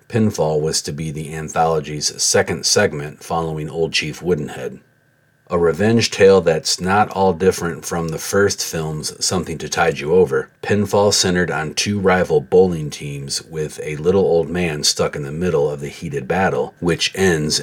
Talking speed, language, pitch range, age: 170 wpm, English, 75-100 Hz, 40-59